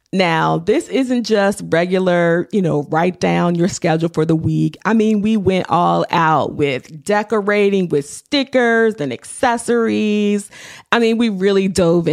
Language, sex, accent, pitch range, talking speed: English, female, American, 165-220 Hz, 155 wpm